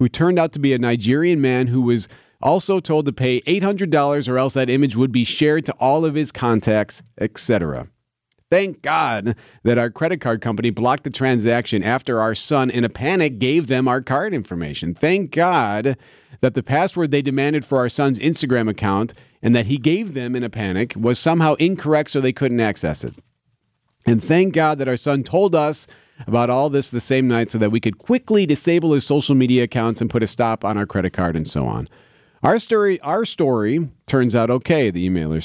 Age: 40-59